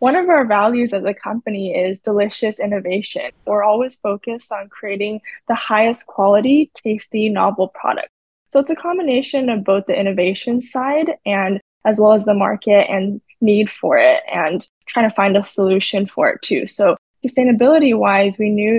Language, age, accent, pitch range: English, 10-29, American, 200-235 Hz